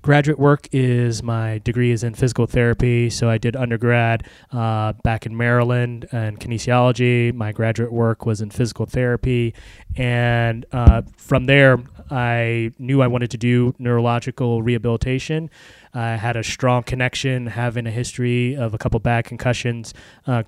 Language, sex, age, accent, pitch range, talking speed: English, male, 20-39, American, 115-130 Hz, 155 wpm